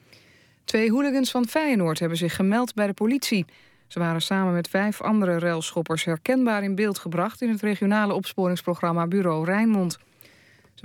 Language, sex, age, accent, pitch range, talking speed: Dutch, female, 20-39, Dutch, 165-205 Hz, 155 wpm